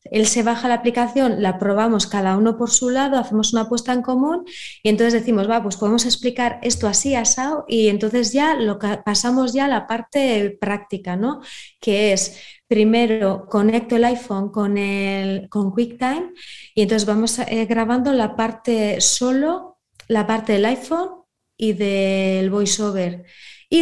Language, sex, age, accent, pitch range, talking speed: Spanish, female, 20-39, Spanish, 210-255 Hz, 165 wpm